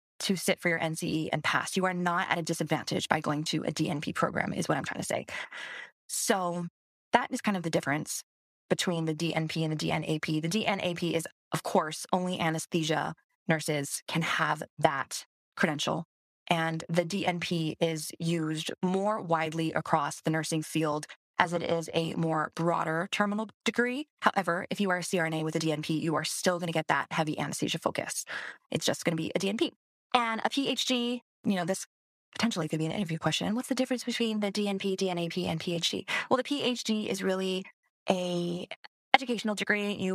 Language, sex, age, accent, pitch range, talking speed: English, female, 20-39, American, 160-215 Hz, 185 wpm